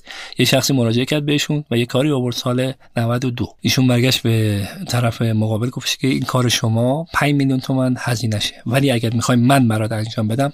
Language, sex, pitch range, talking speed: Persian, male, 115-135 Hz, 190 wpm